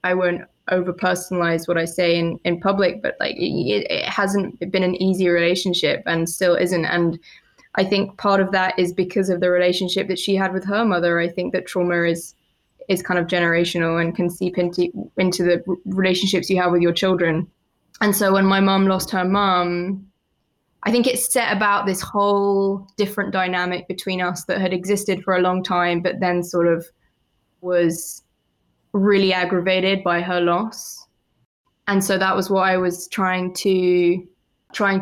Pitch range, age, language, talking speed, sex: 180-200 Hz, 20-39, English, 180 wpm, female